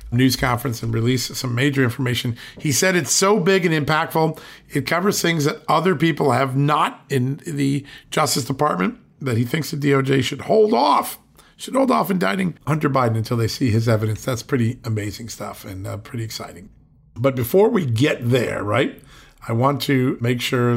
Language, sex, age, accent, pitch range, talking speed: English, male, 50-69, American, 120-145 Hz, 185 wpm